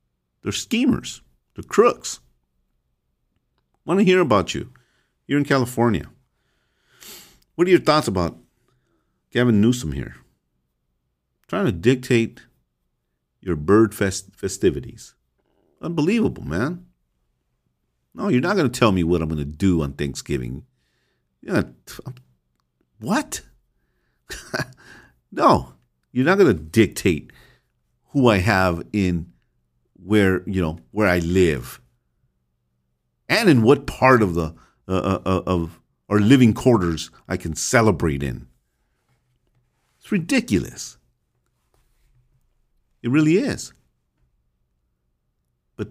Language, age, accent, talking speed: English, 50-69, American, 110 wpm